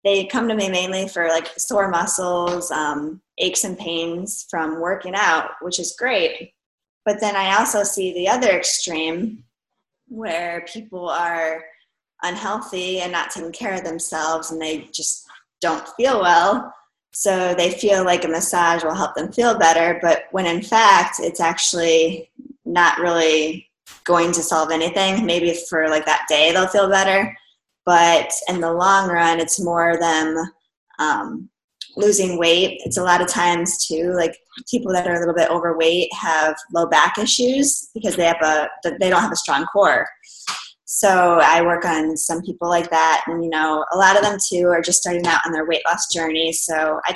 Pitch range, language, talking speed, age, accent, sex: 165-190 Hz, English, 180 wpm, 20-39, American, female